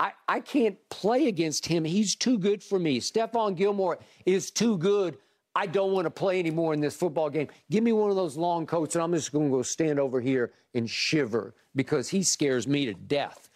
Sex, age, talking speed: male, 50-69, 215 wpm